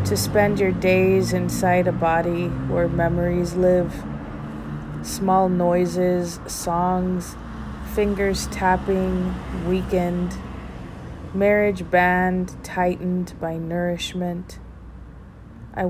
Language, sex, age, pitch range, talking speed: English, female, 30-49, 165-185 Hz, 85 wpm